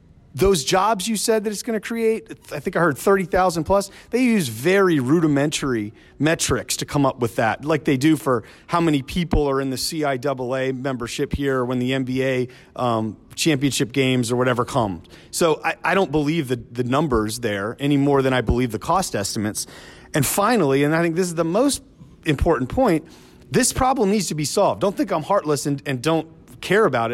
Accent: American